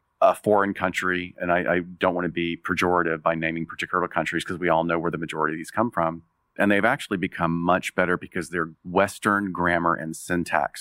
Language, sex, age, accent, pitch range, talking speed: English, male, 40-59, American, 85-100 Hz, 210 wpm